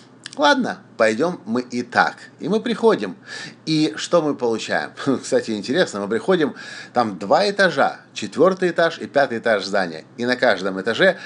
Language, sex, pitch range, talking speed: Russian, male, 125-175 Hz, 160 wpm